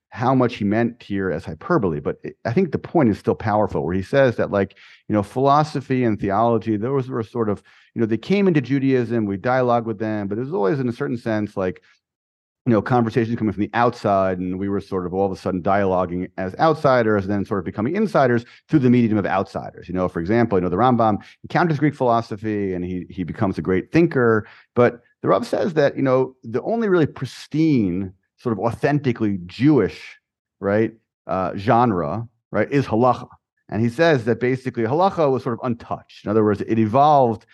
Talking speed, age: 210 wpm, 40-59